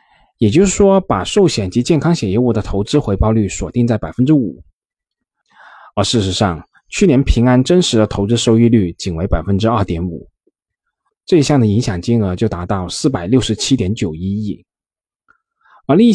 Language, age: Chinese, 20-39